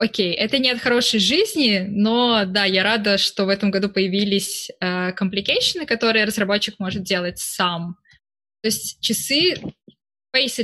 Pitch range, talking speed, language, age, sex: 190-225 Hz, 145 wpm, Russian, 20-39, female